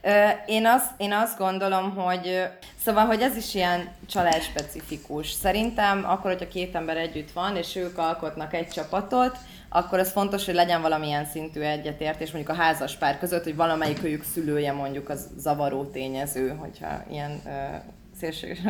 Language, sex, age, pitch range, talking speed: Hungarian, female, 20-39, 140-180 Hz, 150 wpm